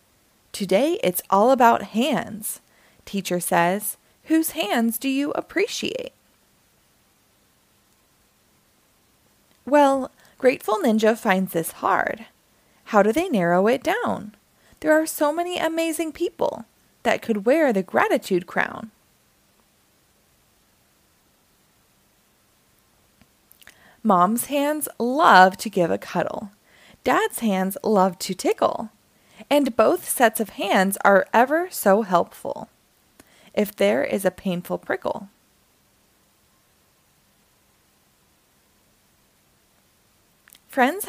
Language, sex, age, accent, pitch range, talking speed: English, female, 20-39, American, 195-290 Hz, 95 wpm